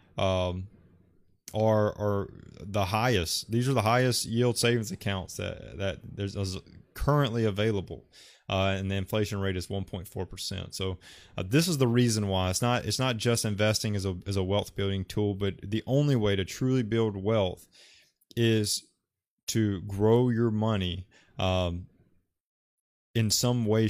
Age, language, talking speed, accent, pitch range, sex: 20-39, English, 155 wpm, American, 95-115 Hz, male